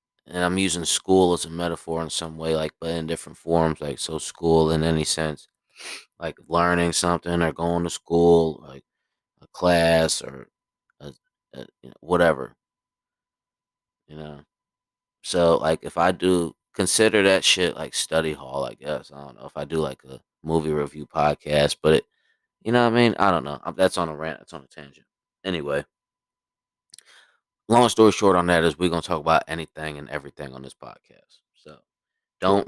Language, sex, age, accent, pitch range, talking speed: English, male, 20-39, American, 80-85 Hz, 185 wpm